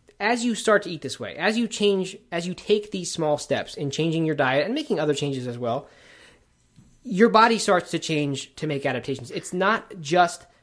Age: 20-39